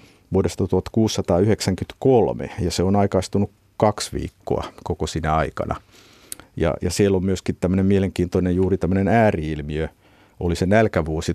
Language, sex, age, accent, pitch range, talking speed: Finnish, male, 50-69, native, 85-95 Hz, 120 wpm